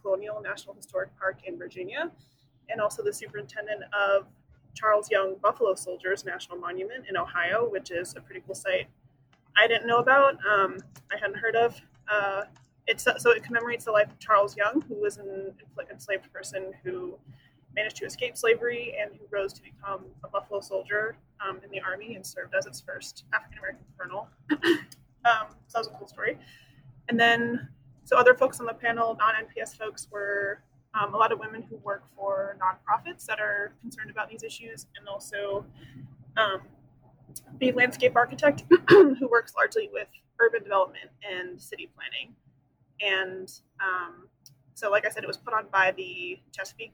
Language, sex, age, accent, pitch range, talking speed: English, female, 20-39, American, 185-235 Hz, 175 wpm